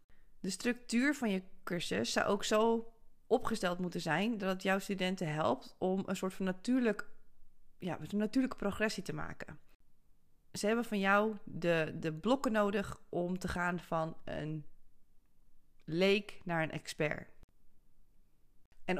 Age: 30-49